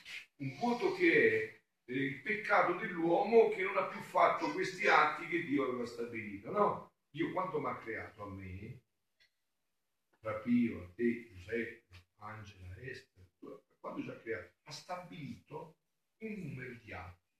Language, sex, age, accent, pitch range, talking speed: Italian, male, 50-69, native, 110-160 Hz, 150 wpm